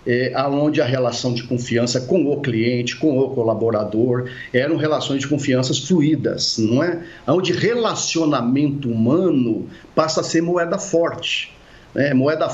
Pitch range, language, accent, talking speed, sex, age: 125-165 Hz, English, Brazilian, 135 wpm, male, 50-69